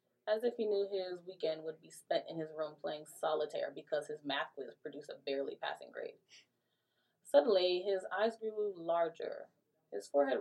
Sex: female